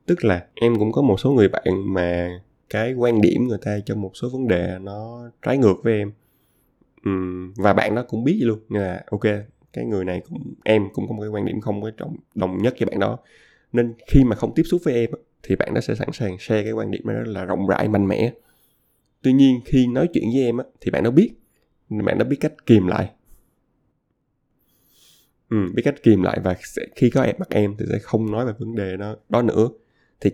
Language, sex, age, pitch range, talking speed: Vietnamese, male, 20-39, 100-120 Hz, 230 wpm